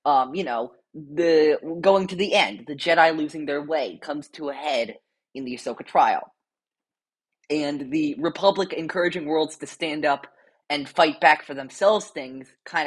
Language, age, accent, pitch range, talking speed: English, 20-39, American, 140-175 Hz, 170 wpm